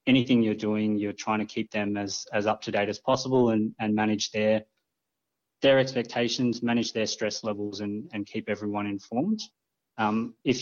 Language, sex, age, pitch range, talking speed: English, male, 20-39, 105-115 Hz, 180 wpm